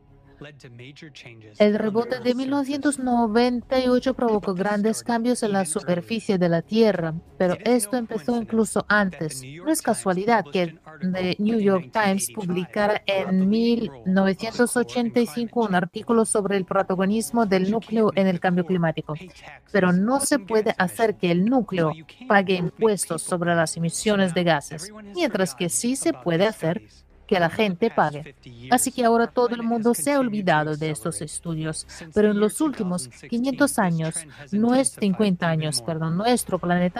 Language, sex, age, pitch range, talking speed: Spanish, female, 50-69, 180-230 Hz, 145 wpm